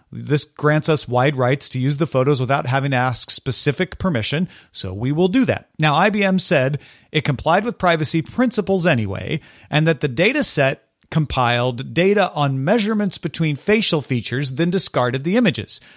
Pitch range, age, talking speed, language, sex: 130-180 Hz, 40-59, 170 wpm, English, male